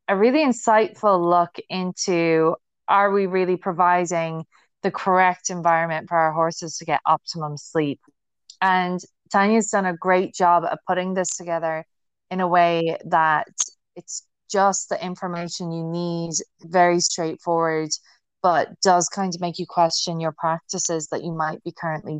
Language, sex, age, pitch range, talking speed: English, female, 20-39, 165-200 Hz, 145 wpm